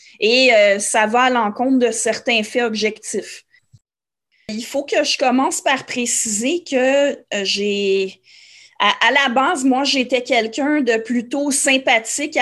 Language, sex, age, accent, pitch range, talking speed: French, female, 30-49, Canadian, 225-275 Hz, 140 wpm